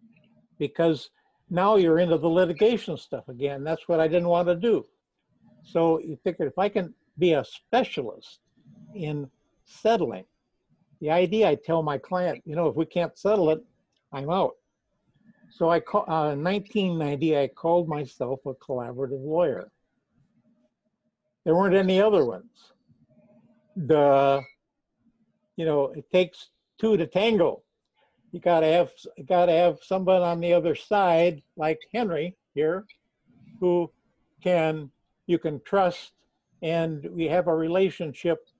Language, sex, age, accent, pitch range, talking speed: English, male, 60-79, American, 150-190 Hz, 140 wpm